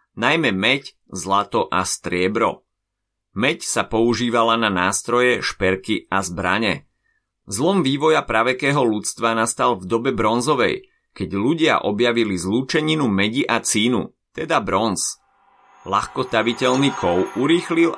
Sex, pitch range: male, 95-130 Hz